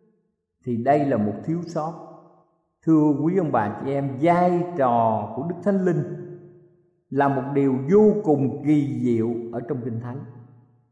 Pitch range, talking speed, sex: 125-185 Hz, 160 wpm, male